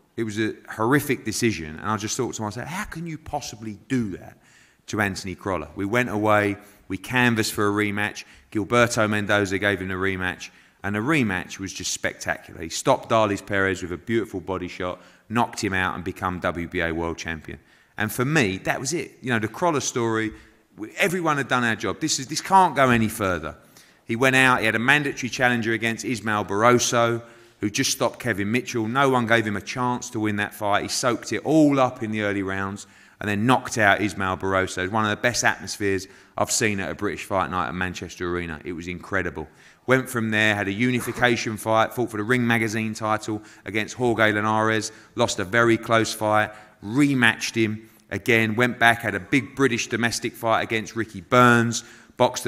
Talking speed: 205 wpm